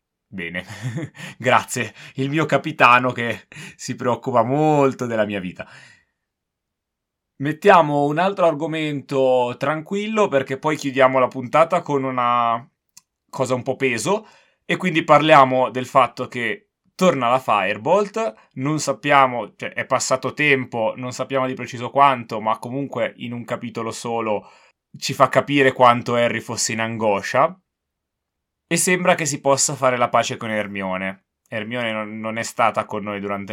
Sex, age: male, 20-39